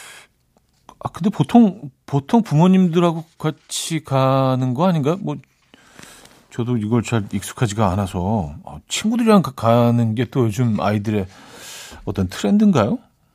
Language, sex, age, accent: Korean, male, 40-59, native